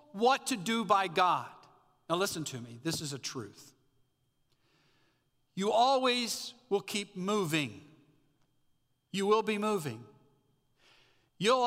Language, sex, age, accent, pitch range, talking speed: English, male, 50-69, American, 125-170 Hz, 120 wpm